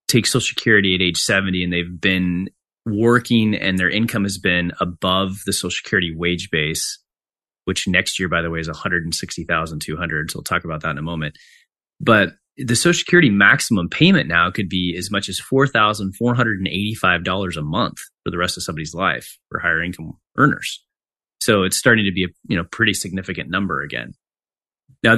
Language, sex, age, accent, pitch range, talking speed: English, male, 30-49, American, 90-115 Hz, 195 wpm